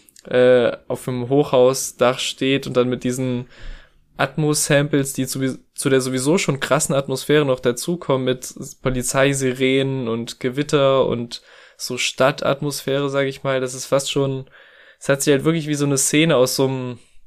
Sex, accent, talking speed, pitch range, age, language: male, German, 155 wpm, 125-150 Hz, 20-39, German